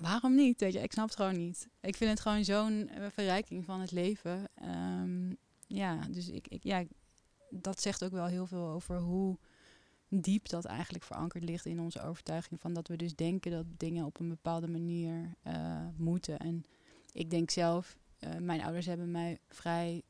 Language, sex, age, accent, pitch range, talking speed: Dutch, female, 20-39, Dutch, 170-190 Hz, 165 wpm